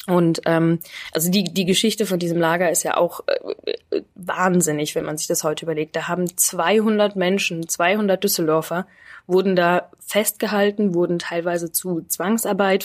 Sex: female